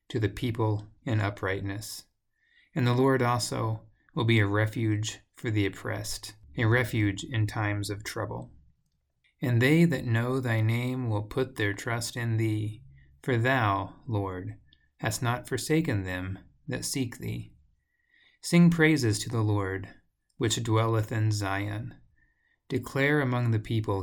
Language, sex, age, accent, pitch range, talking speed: English, male, 30-49, American, 105-125 Hz, 140 wpm